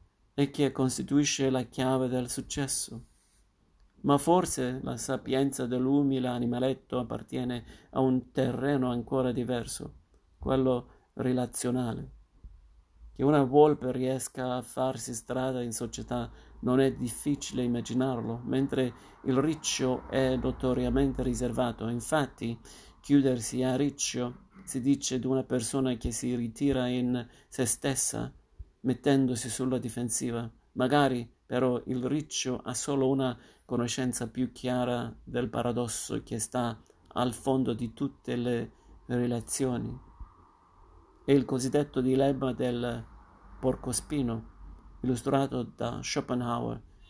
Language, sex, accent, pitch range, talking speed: Italian, male, native, 120-130 Hz, 110 wpm